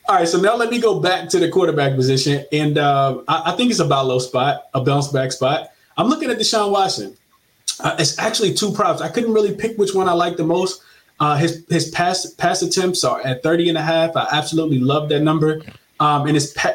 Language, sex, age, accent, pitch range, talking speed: English, male, 20-39, American, 130-170 Hz, 220 wpm